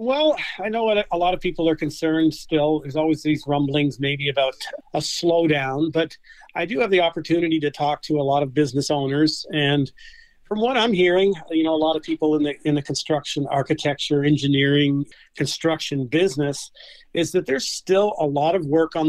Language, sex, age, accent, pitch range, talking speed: English, male, 40-59, American, 145-170 Hz, 190 wpm